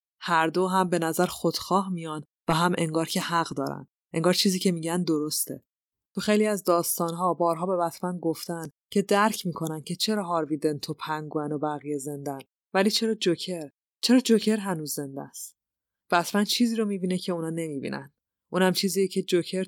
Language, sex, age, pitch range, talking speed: Persian, female, 20-39, 155-190 Hz, 175 wpm